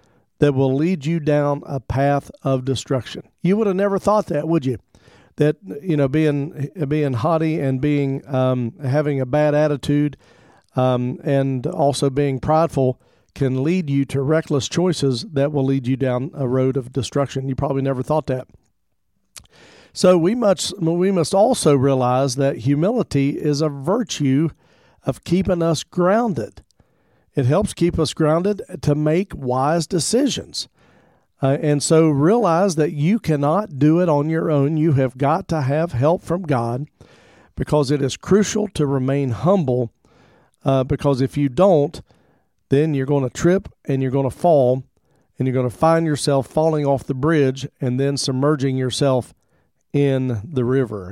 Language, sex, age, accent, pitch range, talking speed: English, male, 50-69, American, 130-160 Hz, 165 wpm